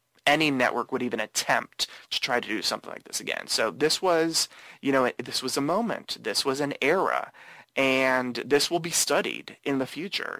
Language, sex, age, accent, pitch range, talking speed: English, male, 30-49, American, 125-150 Hz, 195 wpm